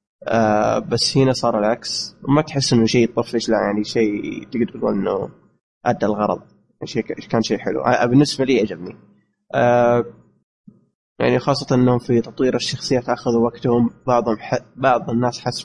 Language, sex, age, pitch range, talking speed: Arabic, male, 20-39, 115-135 Hz, 150 wpm